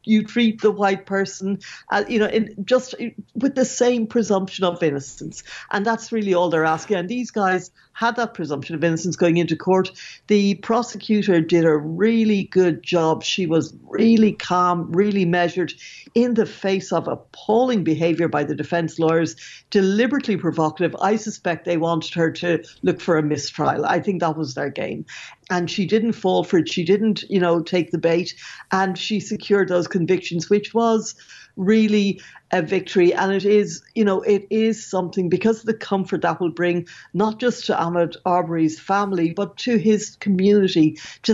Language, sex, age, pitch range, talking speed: English, female, 60-79, 165-205 Hz, 175 wpm